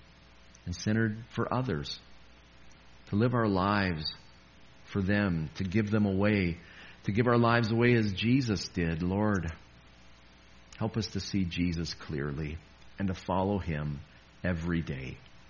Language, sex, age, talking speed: English, male, 50-69, 135 wpm